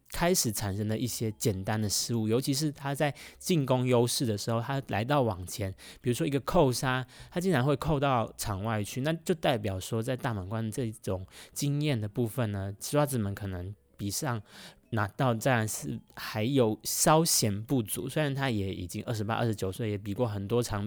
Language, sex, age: Chinese, male, 20-39